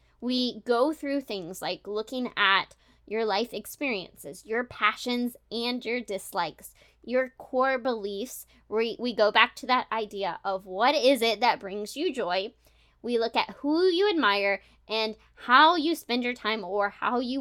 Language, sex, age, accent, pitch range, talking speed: English, female, 20-39, American, 205-265 Hz, 160 wpm